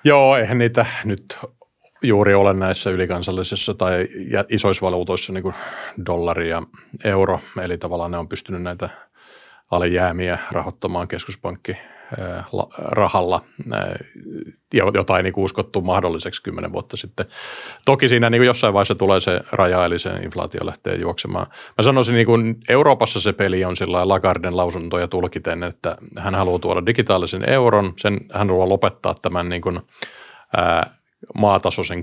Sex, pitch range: male, 90-100 Hz